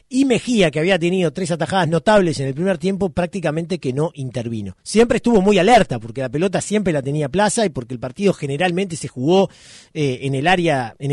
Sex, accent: male, Argentinian